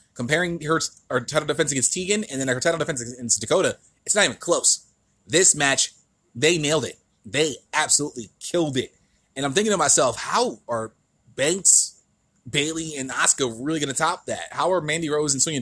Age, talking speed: 20-39, 190 wpm